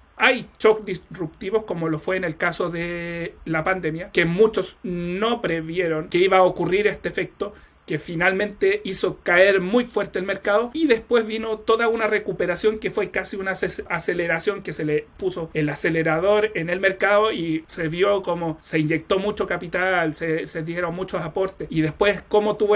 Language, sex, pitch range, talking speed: Spanish, male, 170-210 Hz, 175 wpm